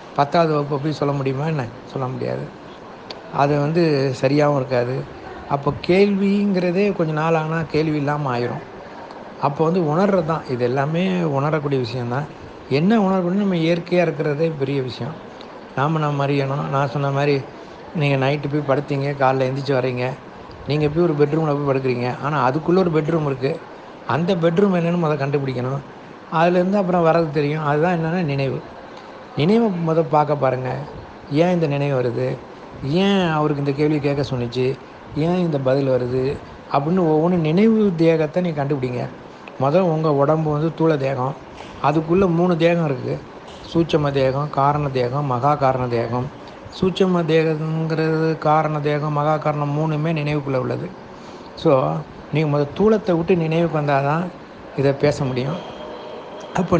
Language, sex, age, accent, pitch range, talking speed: Tamil, male, 60-79, native, 135-165 Hz, 140 wpm